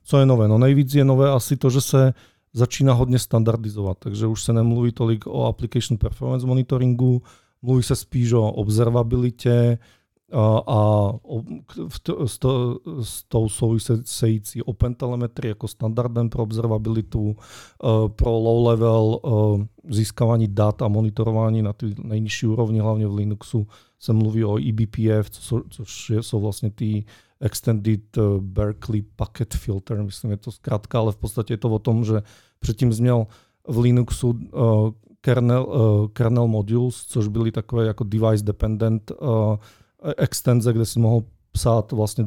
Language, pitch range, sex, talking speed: Czech, 105-120 Hz, male, 155 wpm